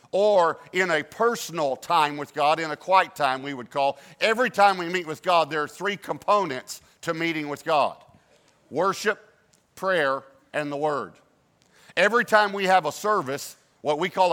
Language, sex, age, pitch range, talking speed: English, male, 50-69, 145-180 Hz, 175 wpm